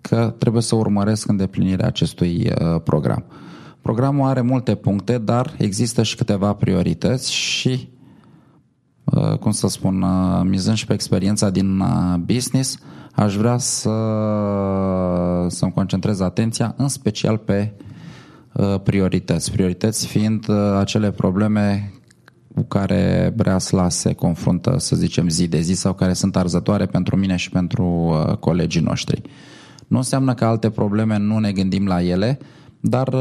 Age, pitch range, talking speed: 20-39, 95-125 Hz, 130 wpm